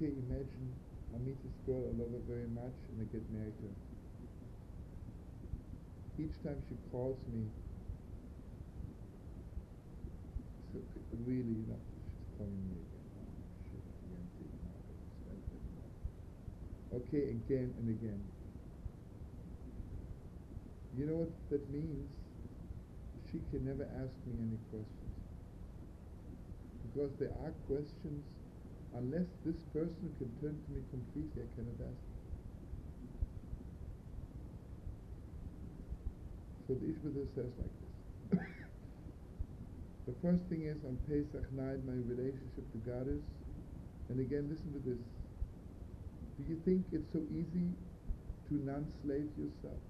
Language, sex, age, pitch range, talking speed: English, male, 50-69, 90-145 Hz, 110 wpm